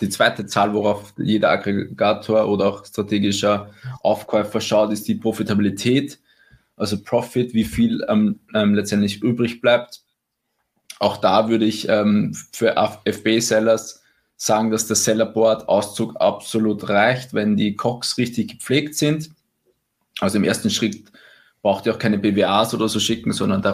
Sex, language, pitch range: male, German, 105-120 Hz